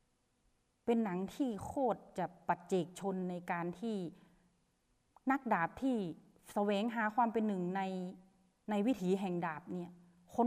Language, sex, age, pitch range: Thai, female, 30-49, 170-210 Hz